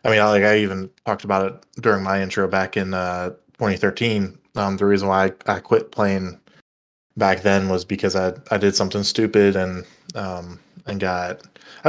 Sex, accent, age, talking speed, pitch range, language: male, American, 20-39, 195 wpm, 90-105 Hz, English